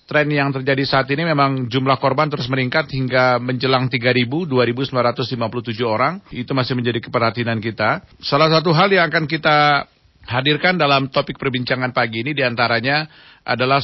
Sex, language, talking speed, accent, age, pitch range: male, Indonesian, 145 wpm, native, 40-59, 120-140 Hz